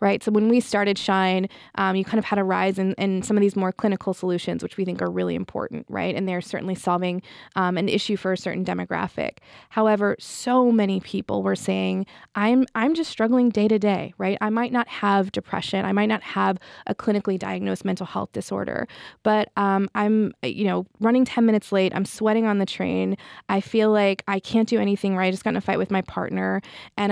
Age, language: 20-39, English